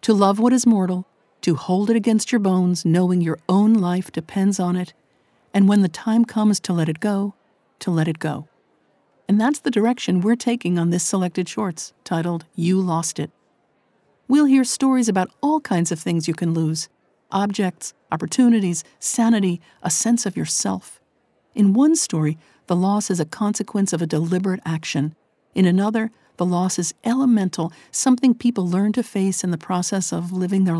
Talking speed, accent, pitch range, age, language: 180 wpm, American, 175-225 Hz, 50-69, English